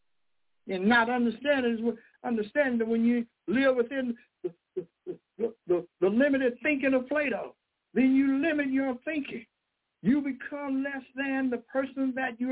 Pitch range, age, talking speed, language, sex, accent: 240-285 Hz, 60-79, 145 wpm, English, male, American